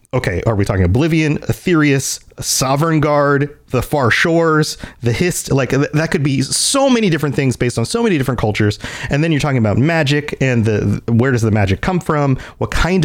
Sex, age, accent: male, 30-49, American